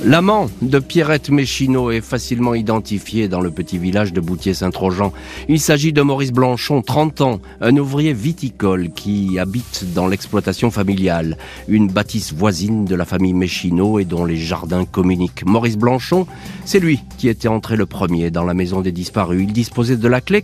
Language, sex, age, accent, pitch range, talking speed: French, male, 40-59, French, 90-125 Hz, 175 wpm